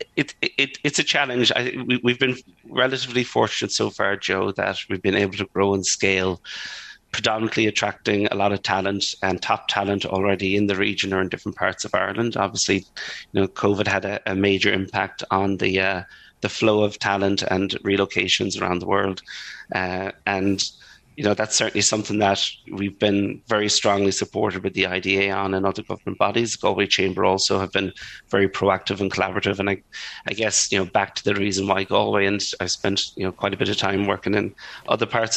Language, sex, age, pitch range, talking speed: English, male, 30-49, 95-105 Hz, 200 wpm